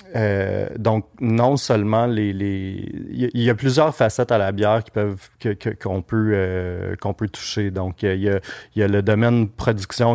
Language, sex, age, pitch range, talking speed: French, male, 30-49, 100-115 Hz, 200 wpm